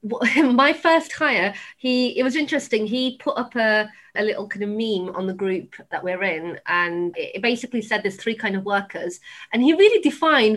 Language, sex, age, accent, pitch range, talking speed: English, female, 30-49, British, 195-250 Hz, 200 wpm